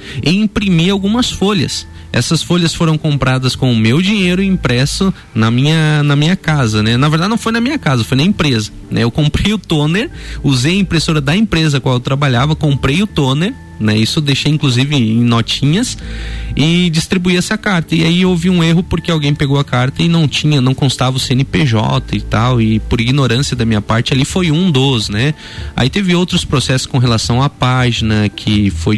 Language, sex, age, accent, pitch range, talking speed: Portuguese, male, 20-39, Brazilian, 115-170 Hz, 200 wpm